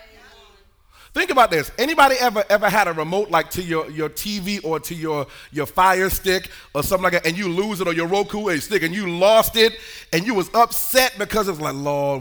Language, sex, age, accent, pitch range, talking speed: English, male, 30-49, American, 165-230 Hz, 230 wpm